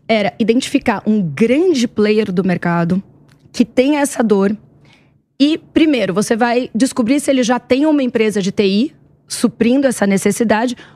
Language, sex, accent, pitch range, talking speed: Portuguese, female, Brazilian, 200-255 Hz, 150 wpm